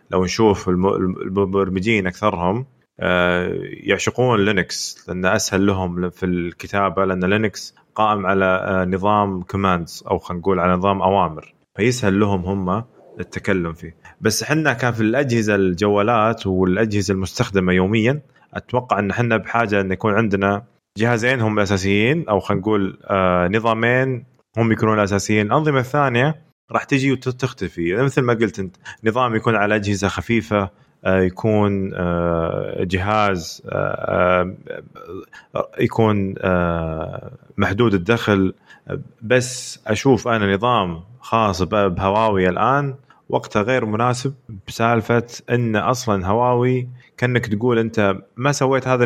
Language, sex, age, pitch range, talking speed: Arabic, male, 20-39, 95-120 Hz, 115 wpm